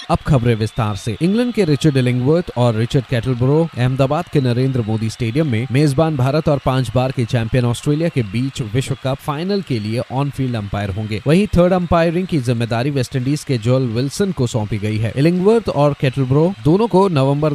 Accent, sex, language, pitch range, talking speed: native, male, Hindi, 120-160 Hz, 190 wpm